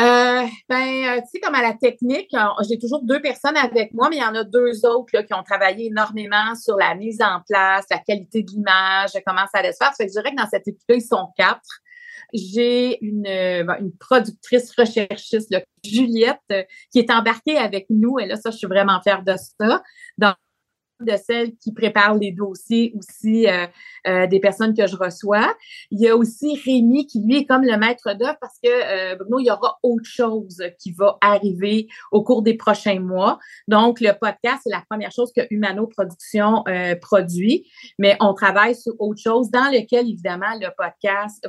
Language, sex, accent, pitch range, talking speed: French, female, Canadian, 200-245 Hz, 200 wpm